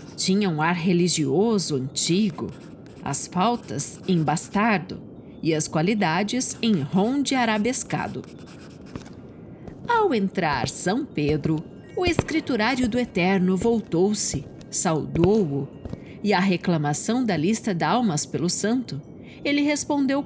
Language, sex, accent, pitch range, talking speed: Portuguese, female, Brazilian, 175-275 Hz, 110 wpm